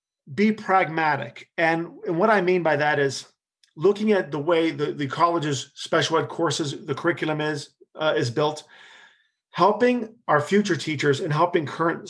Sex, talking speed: male, 165 wpm